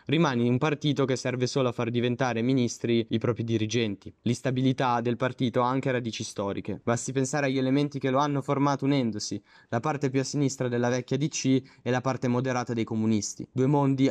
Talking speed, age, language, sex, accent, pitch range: 190 wpm, 20-39, Italian, male, native, 115-135 Hz